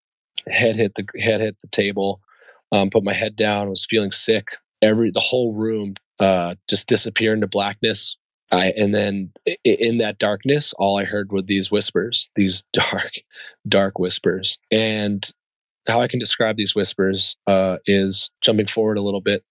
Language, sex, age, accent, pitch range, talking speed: English, male, 20-39, American, 95-110 Hz, 165 wpm